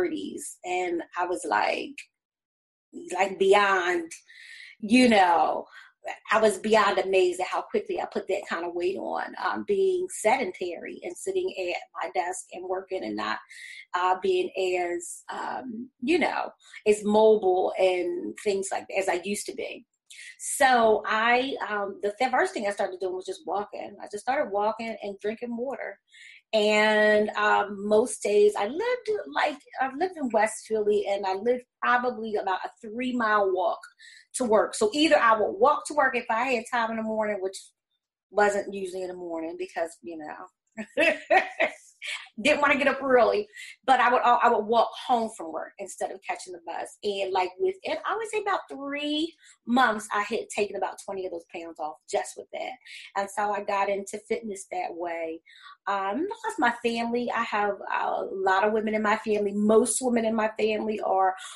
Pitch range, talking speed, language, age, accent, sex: 195-255 Hz, 175 wpm, English, 30-49, American, female